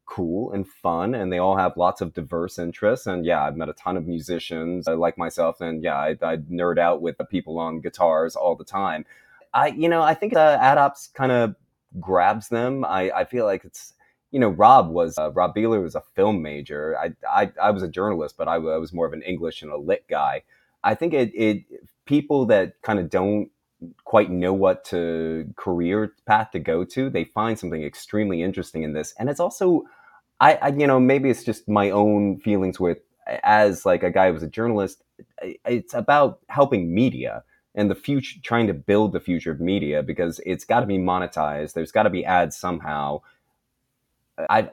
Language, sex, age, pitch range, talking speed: English, male, 30-49, 85-115 Hz, 205 wpm